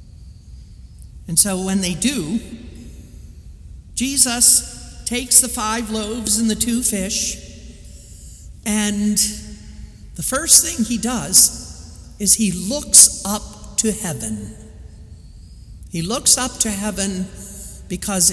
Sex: male